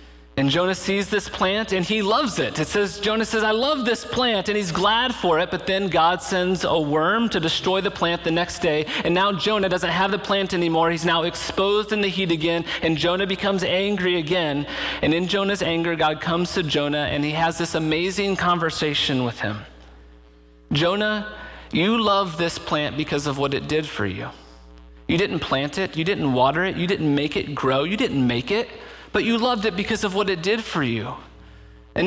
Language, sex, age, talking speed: English, male, 40-59, 210 wpm